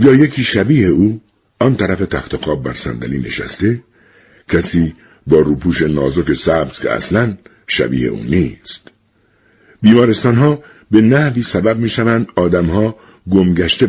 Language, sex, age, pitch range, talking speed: Persian, male, 60-79, 85-115 Hz, 120 wpm